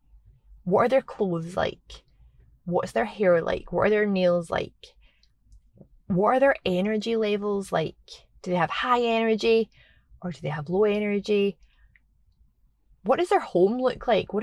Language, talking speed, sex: English, 160 wpm, female